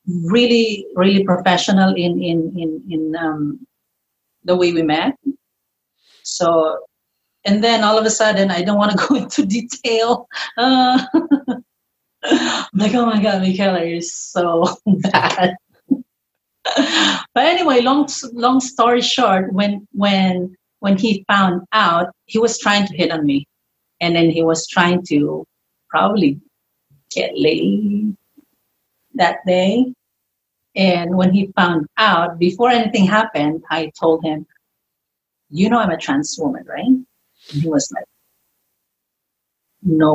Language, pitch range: English, 170-230 Hz